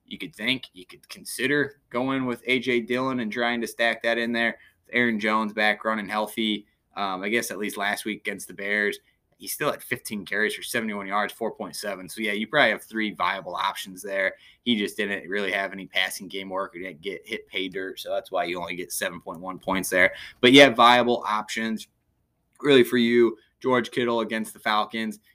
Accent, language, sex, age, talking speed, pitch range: American, English, male, 20-39, 205 wpm, 100-115 Hz